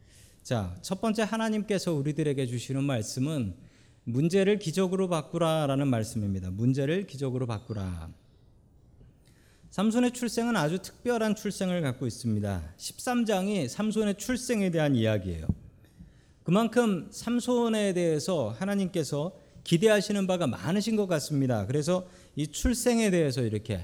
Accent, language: native, Korean